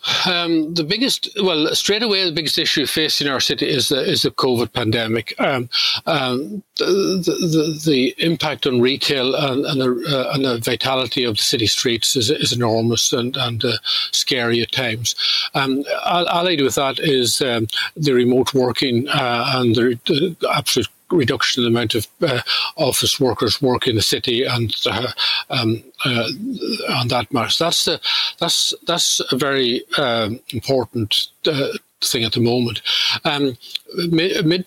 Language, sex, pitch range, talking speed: English, male, 120-155 Hz, 160 wpm